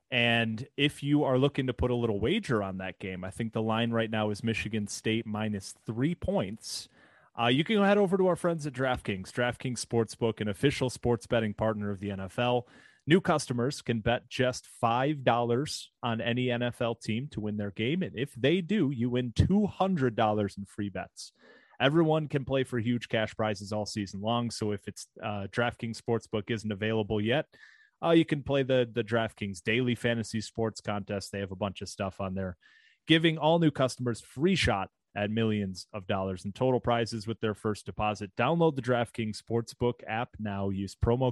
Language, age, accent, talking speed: English, 30-49, American, 195 wpm